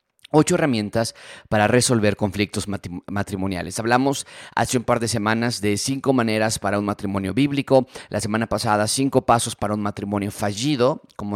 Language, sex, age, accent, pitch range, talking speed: Spanish, male, 30-49, Mexican, 105-140 Hz, 155 wpm